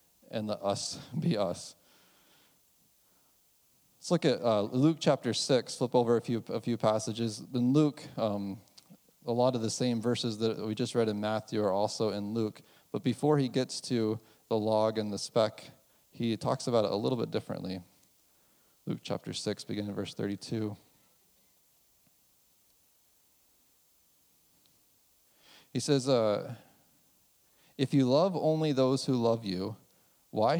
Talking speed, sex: 145 wpm, male